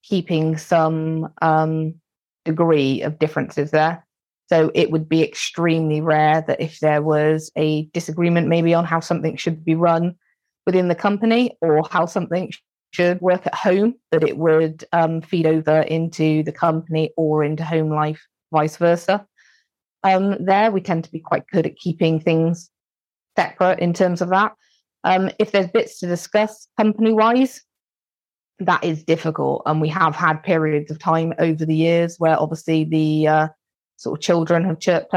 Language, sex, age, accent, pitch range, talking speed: English, female, 20-39, British, 155-170 Hz, 165 wpm